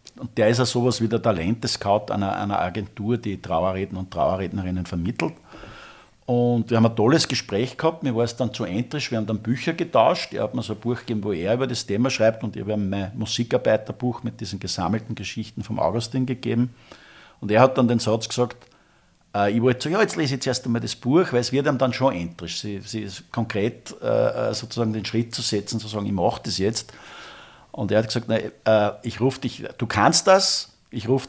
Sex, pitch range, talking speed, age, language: male, 100-120 Hz, 220 wpm, 50-69, German